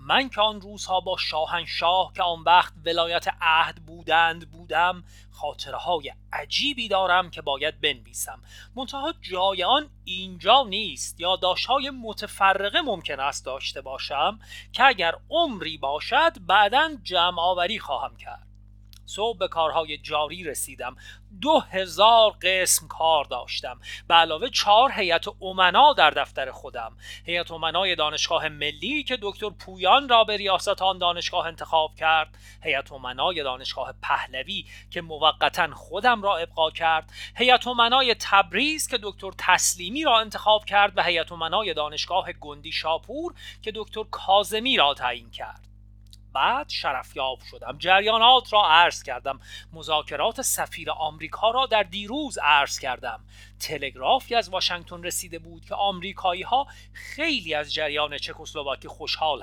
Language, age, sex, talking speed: Persian, 30-49, male, 130 wpm